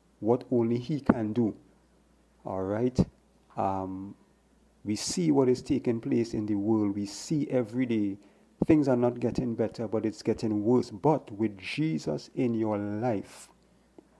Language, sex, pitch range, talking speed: English, male, 110-130 Hz, 150 wpm